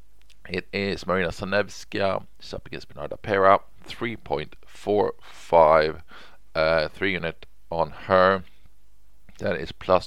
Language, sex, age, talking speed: English, male, 40-59, 100 wpm